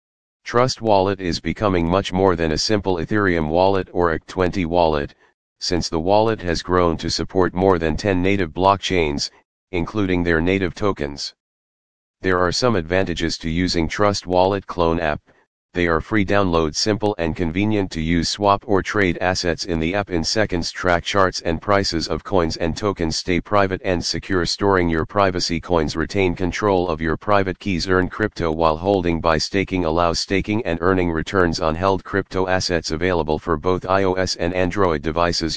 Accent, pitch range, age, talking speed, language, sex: American, 85-95 Hz, 40-59, 175 wpm, English, male